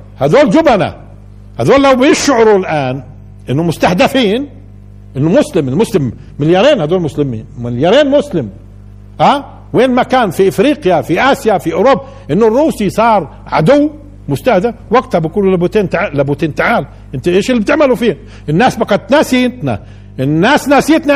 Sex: male